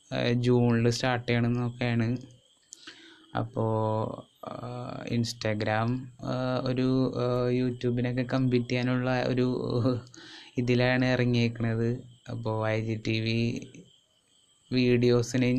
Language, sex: Malayalam, male